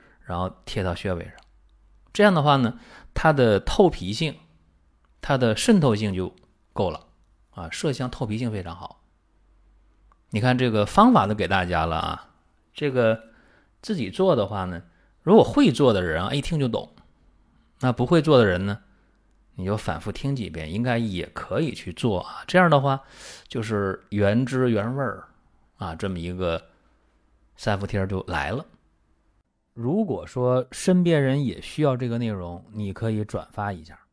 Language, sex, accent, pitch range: Chinese, male, native, 85-125 Hz